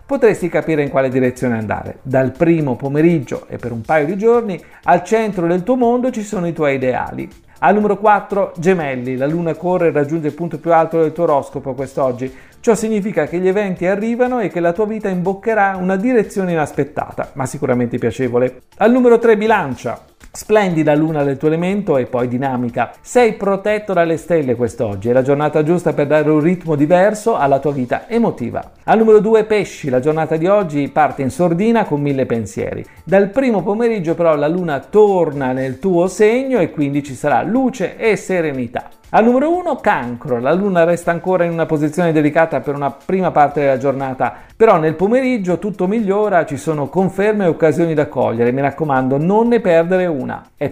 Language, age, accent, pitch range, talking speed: Italian, 40-59, native, 140-205 Hz, 185 wpm